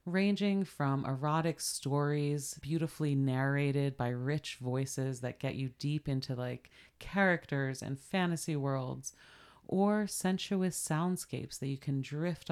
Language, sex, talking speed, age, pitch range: English, female, 125 wpm, 30-49, 135-165 Hz